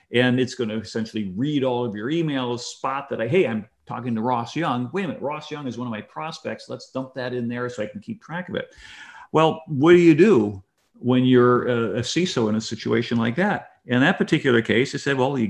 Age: 50-69